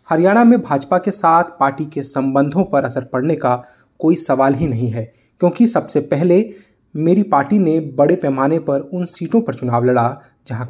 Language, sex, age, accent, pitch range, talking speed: English, male, 20-39, Indian, 130-175 Hz, 180 wpm